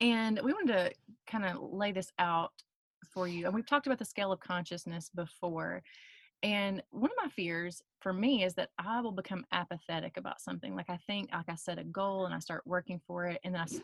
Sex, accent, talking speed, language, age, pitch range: female, American, 220 wpm, English, 30-49, 165-205 Hz